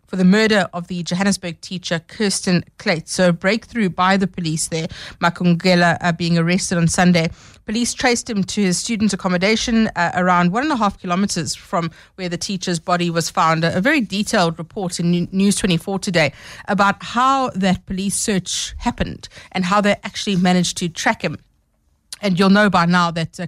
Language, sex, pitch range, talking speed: English, female, 170-200 Hz, 190 wpm